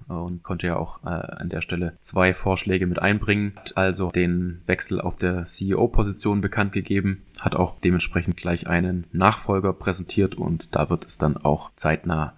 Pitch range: 90-100 Hz